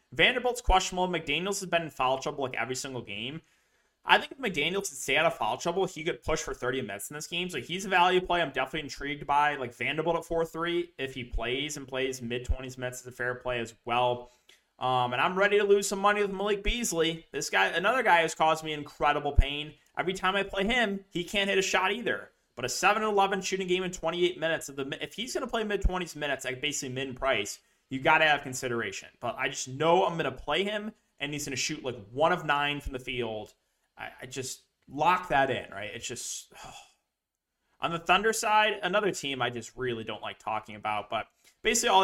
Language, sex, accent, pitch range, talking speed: English, male, American, 130-180 Hz, 230 wpm